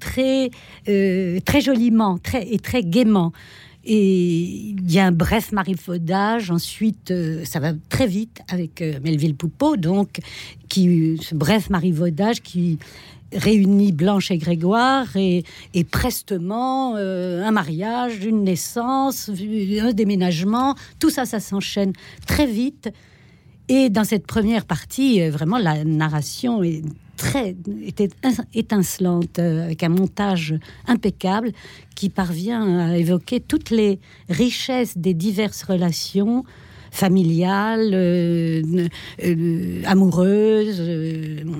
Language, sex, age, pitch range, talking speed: French, female, 60-79, 170-225 Hz, 115 wpm